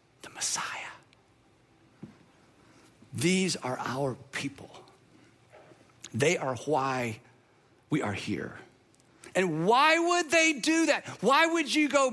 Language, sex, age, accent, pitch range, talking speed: English, male, 50-69, American, 165-240 Hz, 105 wpm